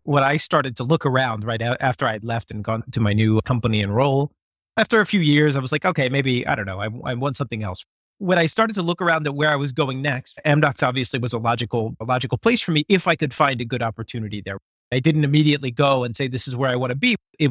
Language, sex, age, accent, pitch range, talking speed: English, male, 30-49, American, 125-160 Hz, 265 wpm